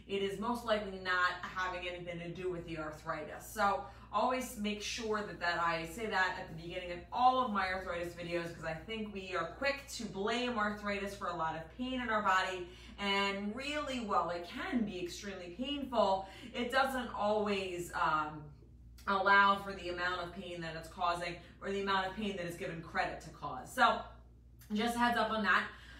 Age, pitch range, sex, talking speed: 30-49, 175-215 Hz, female, 200 wpm